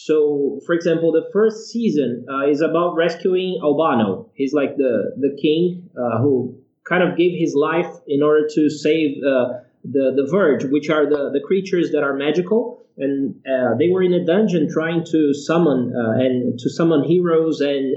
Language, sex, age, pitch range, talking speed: English, male, 20-39, 150-185 Hz, 185 wpm